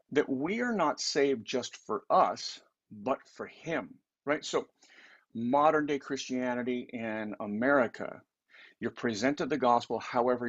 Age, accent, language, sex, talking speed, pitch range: 50-69, American, English, male, 130 wpm, 115-145 Hz